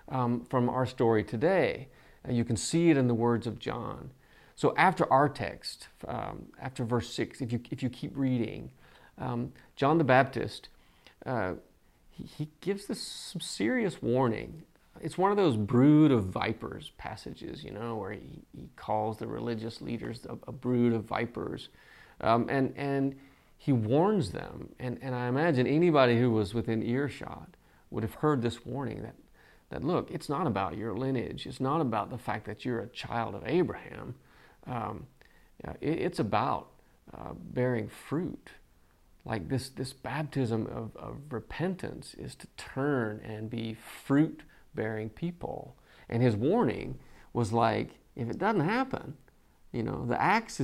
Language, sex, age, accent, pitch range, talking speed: English, male, 30-49, American, 115-135 Hz, 160 wpm